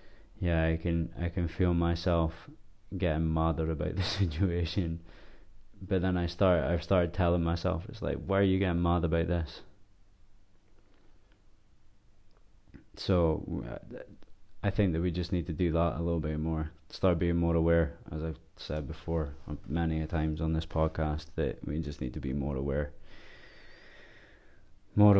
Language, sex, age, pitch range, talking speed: English, male, 20-39, 80-95 Hz, 155 wpm